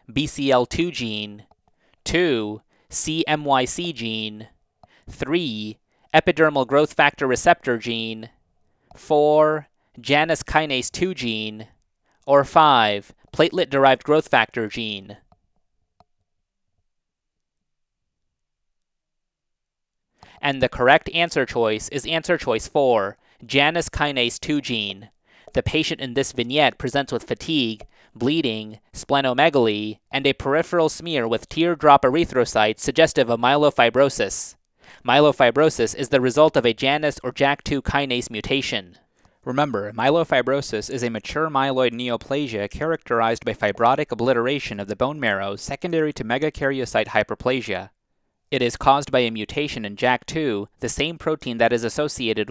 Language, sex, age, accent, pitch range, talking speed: English, male, 30-49, American, 115-150 Hz, 115 wpm